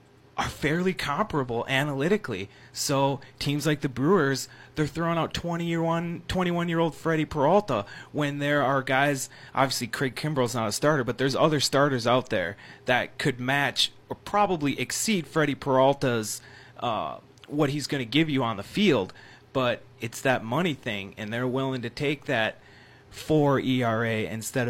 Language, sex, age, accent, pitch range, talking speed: English, male, 30-49, American, 115-150 Hz, 155 wpm